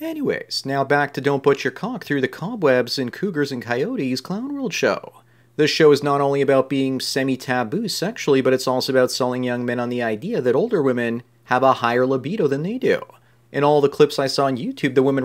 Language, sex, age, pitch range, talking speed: English, male, 30-49, 125-145 Hz, 225 wpm